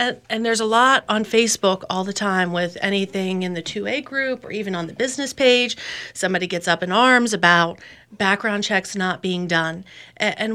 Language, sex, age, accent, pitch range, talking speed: English, female, 40-59, American, 190-260 Hz, 195 wpm